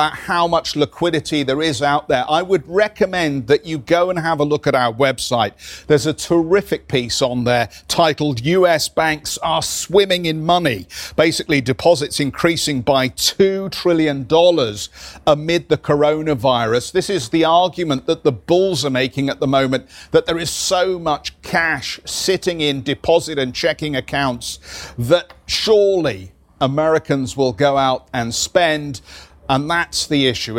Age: 50-69